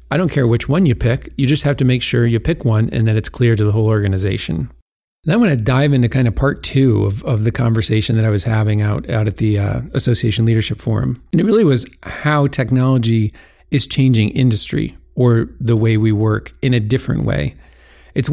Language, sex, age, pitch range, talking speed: English, male, 40-59, 110-130 Hz, 225 wpm